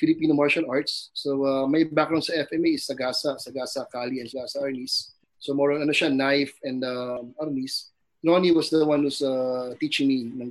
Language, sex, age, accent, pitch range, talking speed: Filipino, male, 20-39, native, 135-165 Hz, 175 wpm